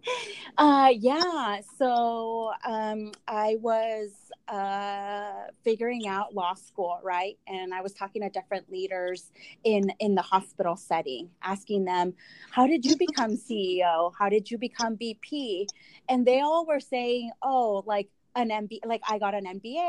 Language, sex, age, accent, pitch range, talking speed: English, female, 30-49, American, 190-235 Hz, 150 wpm